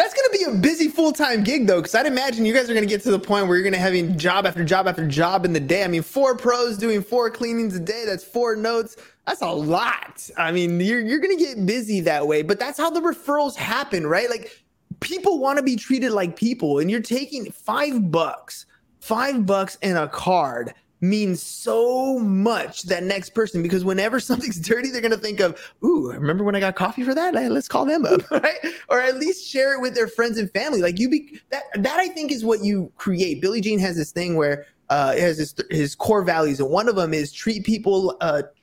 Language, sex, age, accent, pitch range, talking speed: English, male, 20-39, American, 180-255 Hz, 240 wpm